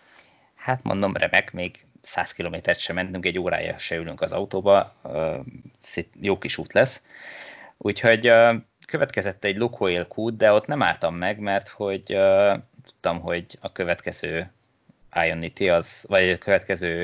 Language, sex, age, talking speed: Hungarian, male, 20-39, 135 wpm